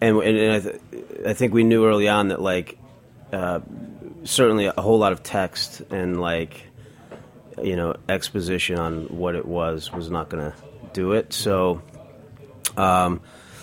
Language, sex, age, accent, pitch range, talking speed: English, male, 30-49, American, 85-110 Hz, 160 wpm